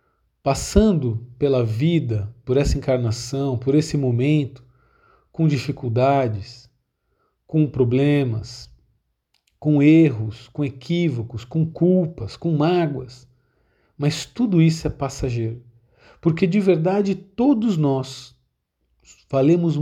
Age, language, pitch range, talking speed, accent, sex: 40-59, Portuguese, 120-160 Hz, 95 wpm, Brazilian, male